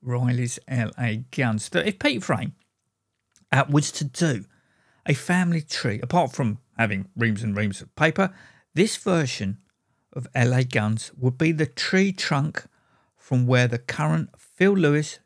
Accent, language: British, English